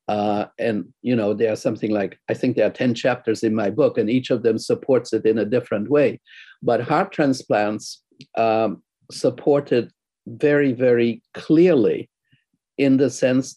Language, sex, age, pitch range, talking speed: English, male, 50-69, 115-135 Hz, 175 wpm